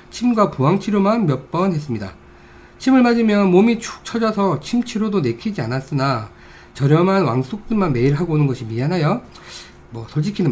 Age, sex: 40-59, male